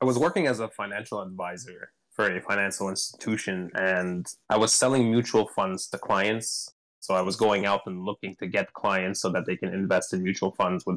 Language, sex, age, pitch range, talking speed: English, male, 20-39, 95-125 Hz, 210 wpm